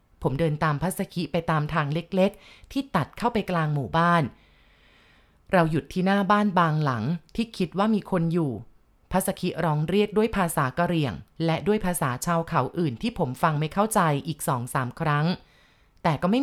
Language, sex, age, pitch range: Thai, female, 30-49, 155-195 Hz